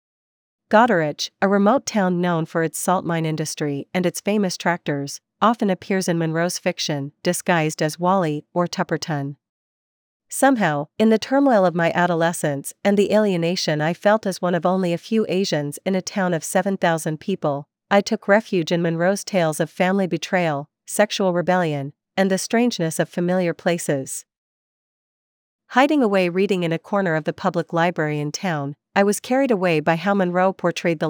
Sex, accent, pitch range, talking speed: female, American, 160-195 Hz, 170 wpm